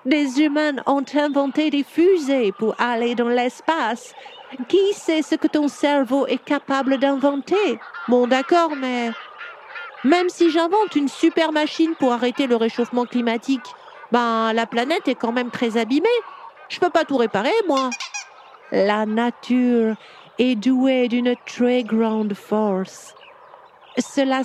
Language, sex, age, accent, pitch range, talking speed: French, female, 50-69, French, 225-285 Hz, 135 wpm